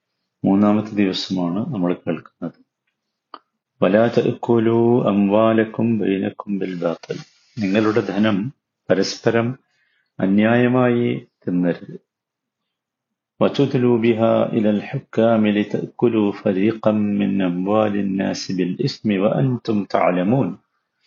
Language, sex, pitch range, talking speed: Malayalam, male, 100-120 Hz, 35 wpm